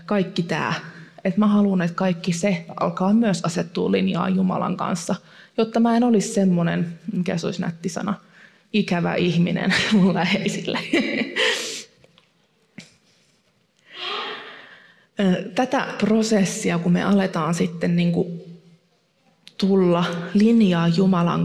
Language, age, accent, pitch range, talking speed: Finnish, 20-39, native, 180-210 Hz, 105 wpm